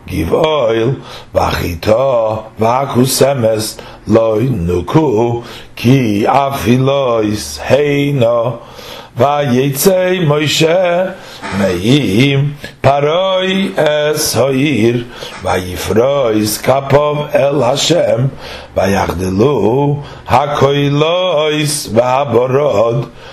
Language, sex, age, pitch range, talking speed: English, male, 60-79, 110-145 Hz, 70 wpm